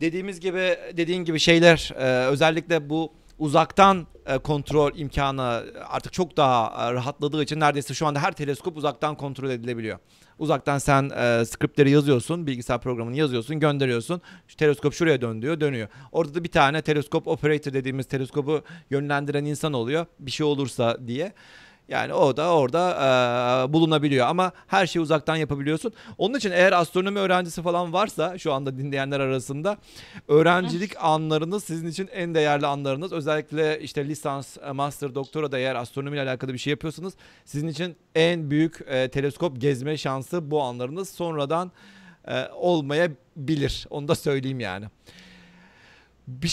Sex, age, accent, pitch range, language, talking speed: male, 40-59, native, 135-170 Hz, Turkish, 145 wpm